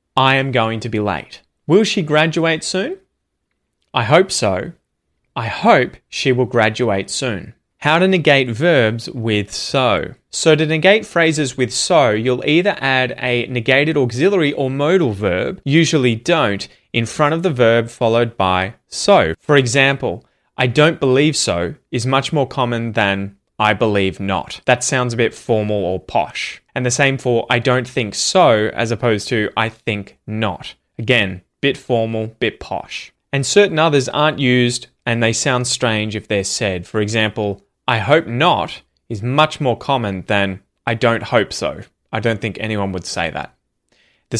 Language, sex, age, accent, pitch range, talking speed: English, male, 20-39, Australian, 110-140 Hz, 170 wpm